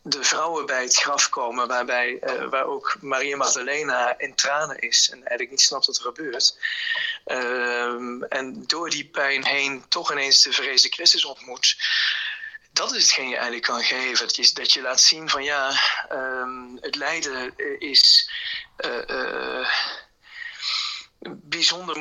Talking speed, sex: 155 wpm, male